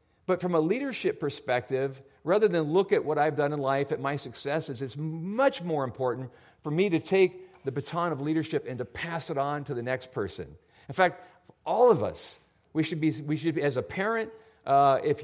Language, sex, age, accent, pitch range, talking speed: English, male, 50-69, American, 135-185 Hz, 210 wpm